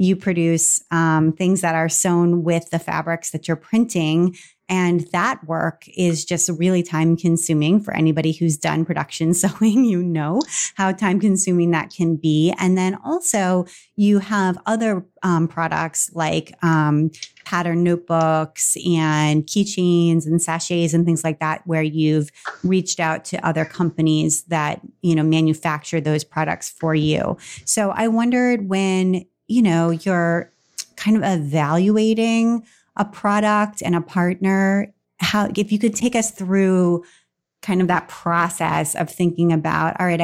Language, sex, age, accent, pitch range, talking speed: English, female, 30-49, American, 160-190 Hz, 150 wpm